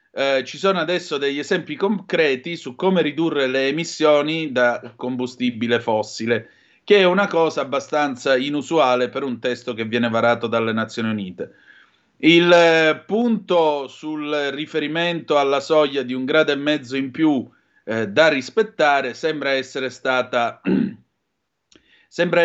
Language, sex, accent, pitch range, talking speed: Italian, male, native, 125-165 Hz, 130 wpm